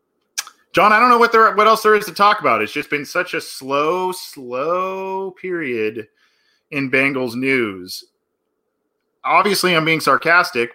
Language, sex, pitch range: English, male, 130-190 Hz